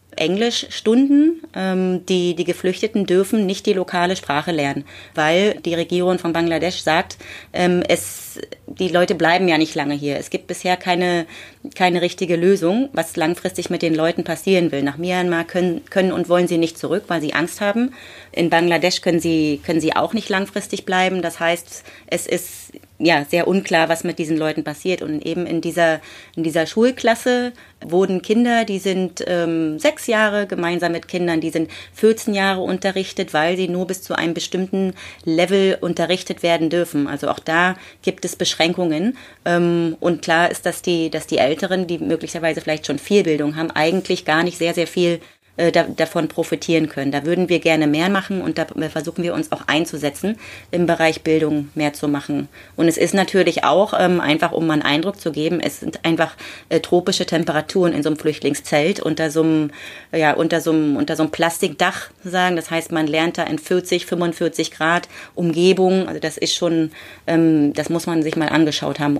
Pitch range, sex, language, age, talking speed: 160-185 Hz, female, German, 30-49, 185 wpm